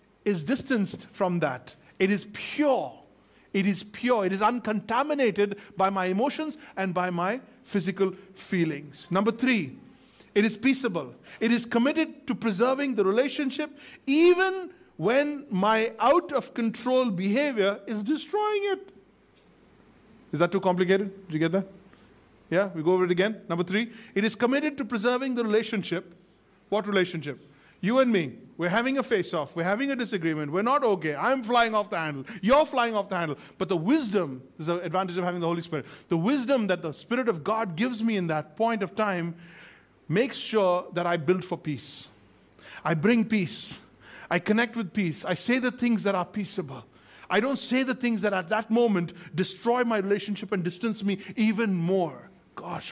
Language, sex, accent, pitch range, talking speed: English, male, Indian, 170-240 Hz, 175 wpm